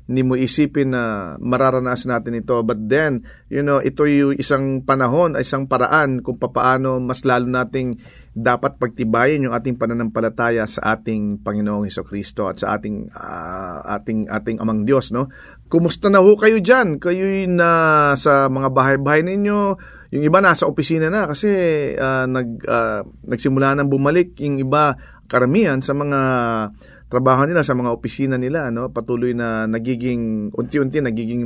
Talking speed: 160 wpm